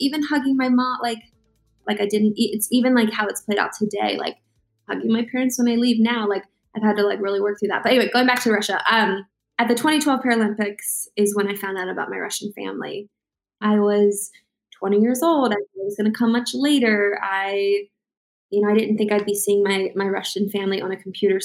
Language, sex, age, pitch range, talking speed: English, female, 20-39, 195-240 Hz, 225 wpm